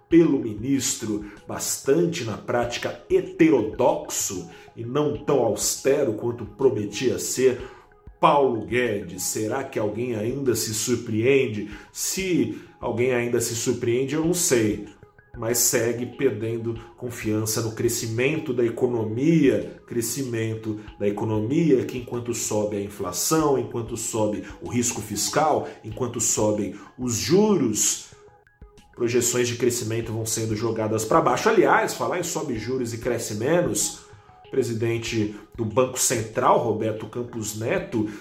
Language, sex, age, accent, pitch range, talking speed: Portuguese, male, 40-59, Brazilian, 110-130 Hz, 120 wpm